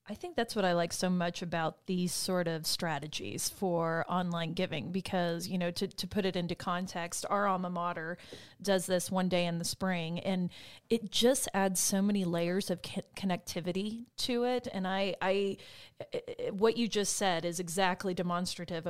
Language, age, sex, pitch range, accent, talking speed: English, 30-49, female, 175-200 Hz, American, 180 wpm